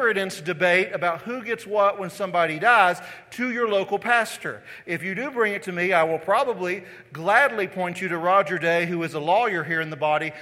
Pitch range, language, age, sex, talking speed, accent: 160-205 Hz, English, 40-59, male, 205 wpm, American